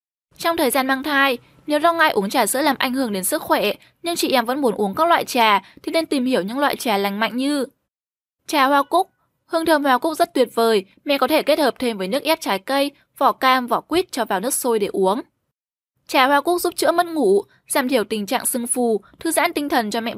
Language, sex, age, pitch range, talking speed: Vietnamese, female, 10-29, 225-295 Hz, 255 wpm